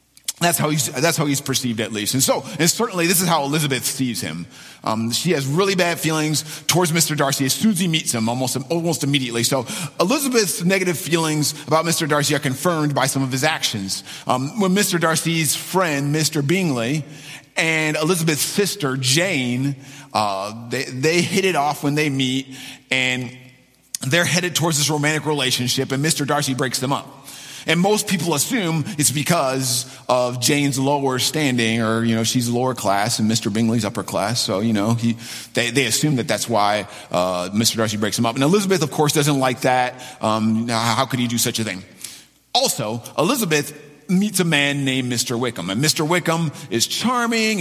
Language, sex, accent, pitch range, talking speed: English, male, American, 125-170 Hz, 185 wpm